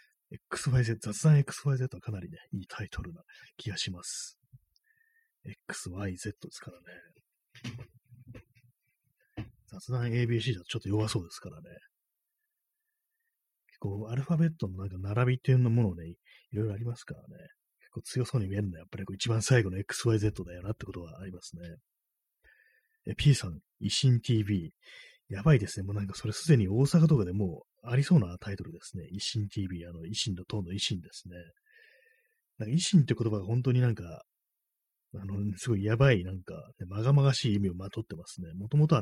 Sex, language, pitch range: male, Japanese, 95-135 Hz